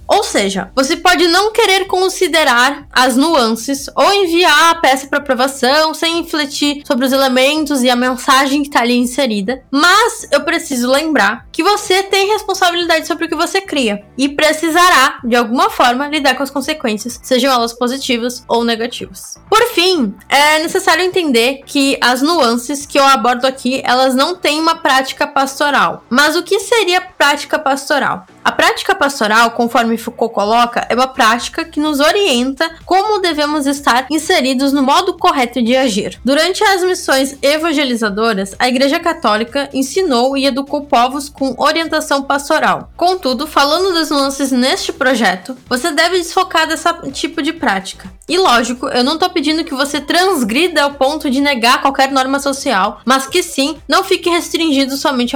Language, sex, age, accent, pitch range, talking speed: Portuguese, female, 10-29, Brazilian, 255-330 Hz, 160 wpm